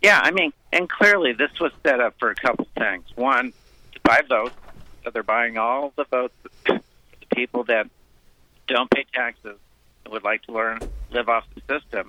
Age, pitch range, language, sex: 50-69, 105-135 Hz, English, male